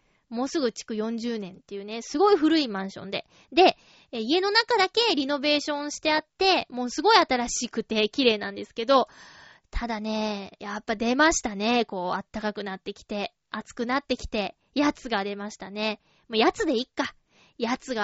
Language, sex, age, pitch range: Japanese, female, 20-39, 225-320 Hz